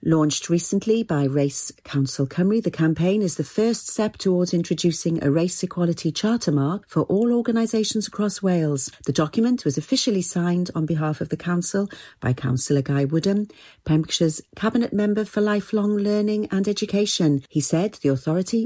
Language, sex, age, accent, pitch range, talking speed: English, female, 40-59, British, 150-205 Hz, 160 wpm